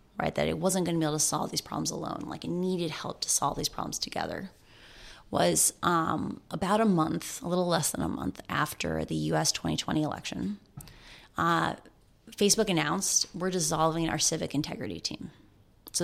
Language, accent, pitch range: English, American, 155-195 Hz